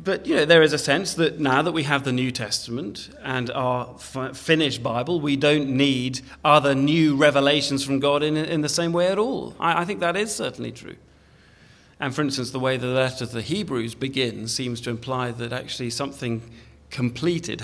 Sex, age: male, 40-59